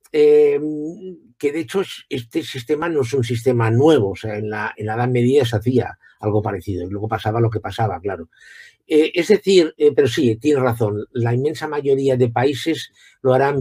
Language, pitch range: Spanish, 115-150 Hz